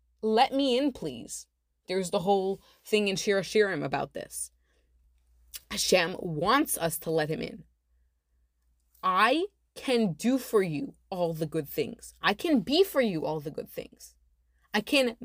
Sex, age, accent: female, 20-39, American